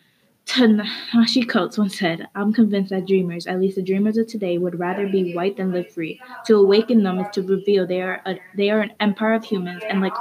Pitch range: 185-225 Hz